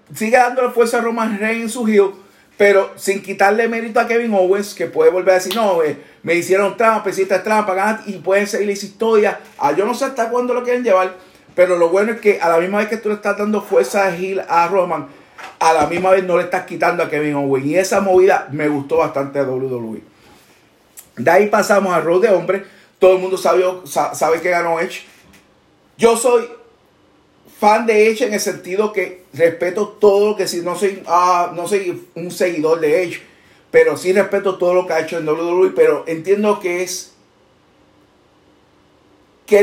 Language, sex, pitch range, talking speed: Spanish, male, 175-225 Hz, 200 wpm